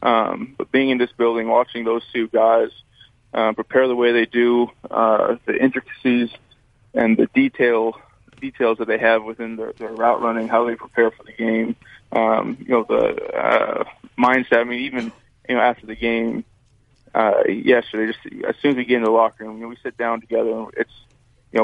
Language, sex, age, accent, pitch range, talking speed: English, male, 20-39, American, 115-125 Hz, 200 wpm